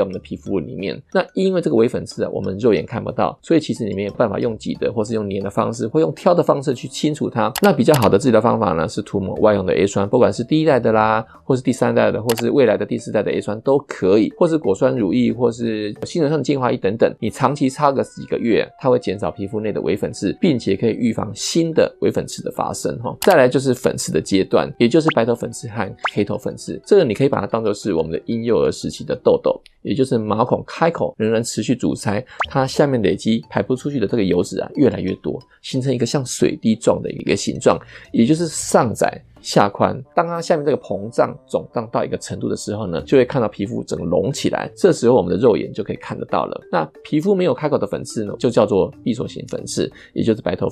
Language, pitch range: Chinese, 110-155 Hz